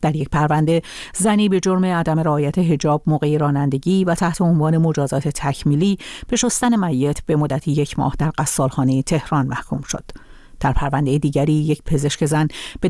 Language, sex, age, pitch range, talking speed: Persian, female, 50-69, 145-185 Hz, 165 wpm